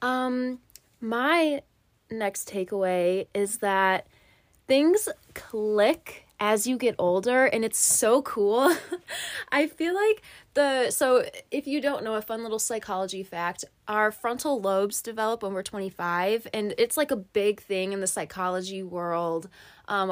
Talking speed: 145 wpm